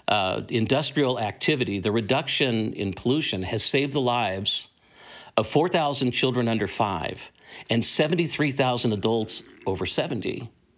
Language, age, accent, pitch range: English, 50-69, American, 110-140 Hz